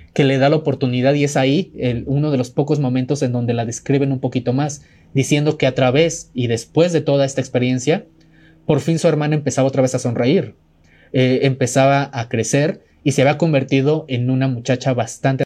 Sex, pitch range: male, 125-155 Hz